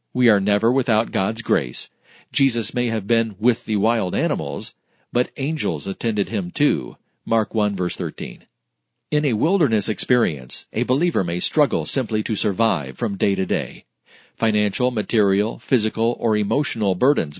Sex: male